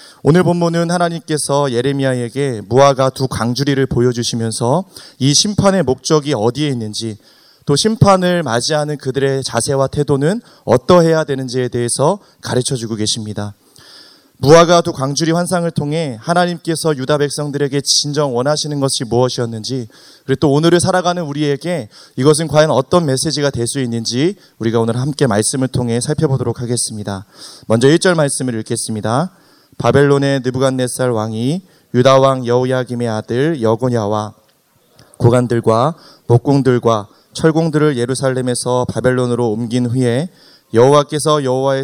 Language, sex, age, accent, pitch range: Korean, male, 30-49, native, 120-155 Hz